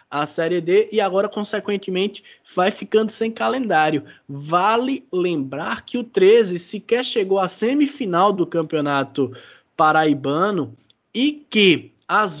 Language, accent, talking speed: Portuguese, Brazilian, 120 wpm